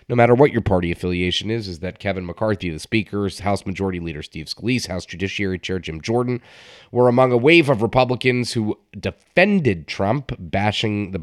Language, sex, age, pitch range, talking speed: English, male, 30-49, 90-110 Hz, 180 wpm